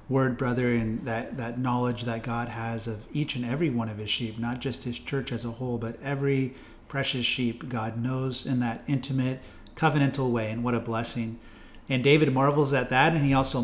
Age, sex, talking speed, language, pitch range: 30-49, male, 205 wpm, English, 120-150 Hz